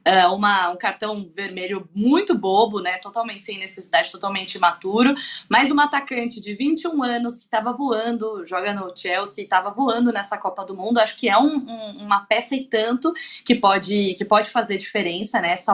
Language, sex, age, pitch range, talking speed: Portuguese, female, 10-29, 195-250 Hz, 185 wpm